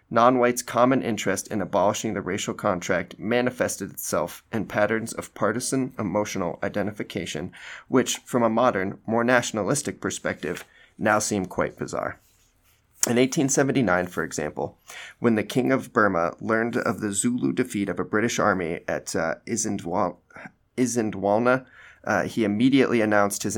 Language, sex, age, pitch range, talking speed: English, male, 30-49, 100-125 Hz, 135 wpm